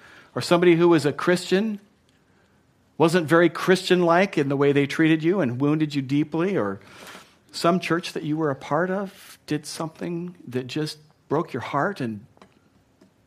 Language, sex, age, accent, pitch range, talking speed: English, male, 50-69, American, 120-165 Hz, 165 wpm